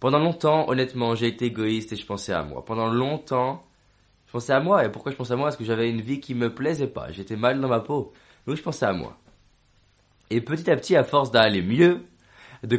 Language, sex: French, male